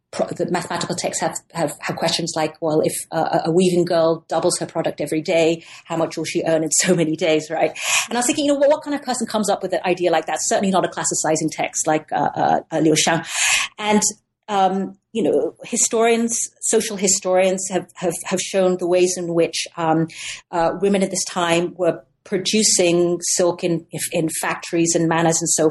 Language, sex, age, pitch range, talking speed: English, female, 40-59, 165-200 Hz, 210 wpm